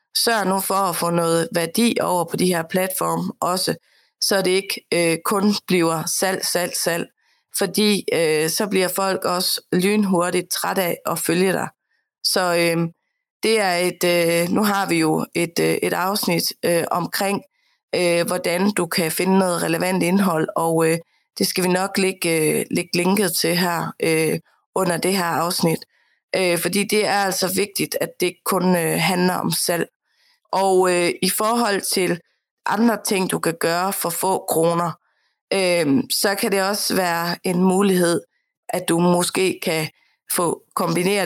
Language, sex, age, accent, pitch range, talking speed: Danish, female, 30-49, native, 170-195 Hz, 165 wpm